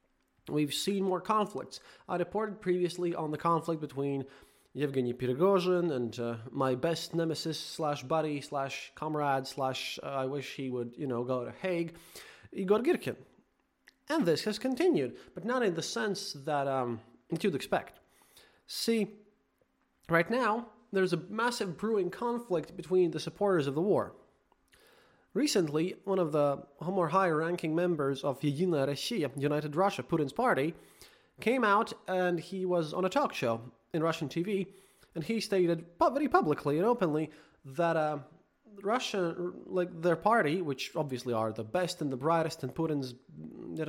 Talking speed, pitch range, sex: 155 wpm, 145-195 Hz, male